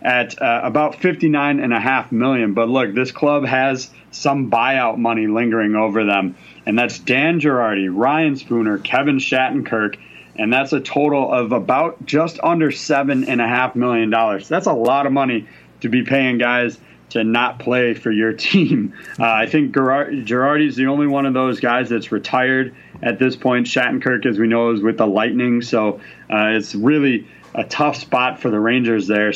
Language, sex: English, male